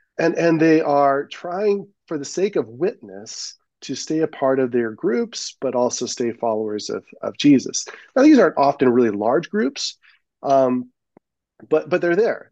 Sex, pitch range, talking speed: male, 120-145 Hz, 175 wpm